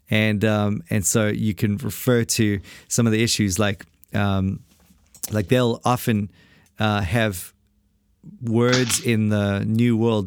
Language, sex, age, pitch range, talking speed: English, male, 40-59, 100-115 Hz, 140 wpm